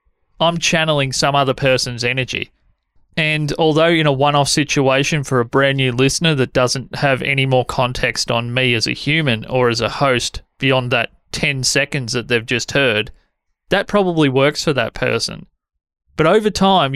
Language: English